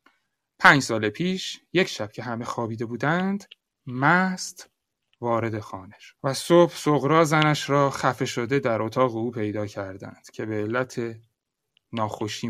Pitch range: 125-195 Hz